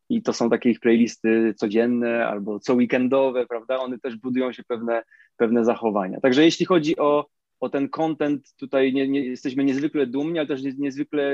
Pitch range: 115-135 Hz